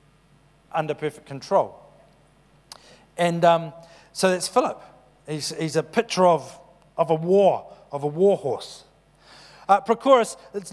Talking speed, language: 115 wpm, English